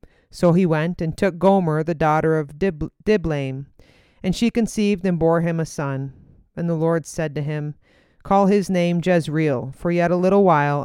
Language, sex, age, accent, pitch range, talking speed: English, female, 30-49, American, 150-185 Hz, 185 wpm